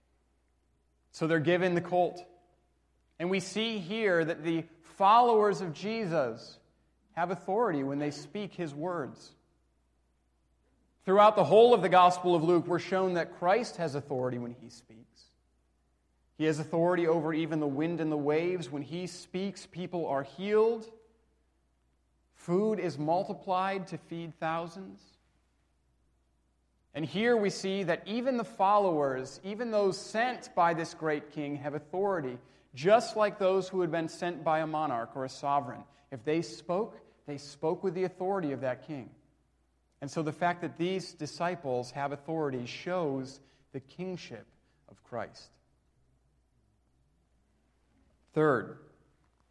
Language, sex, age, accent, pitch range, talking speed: English, male, 30-49, American, 125-180 Hz, 140 wpm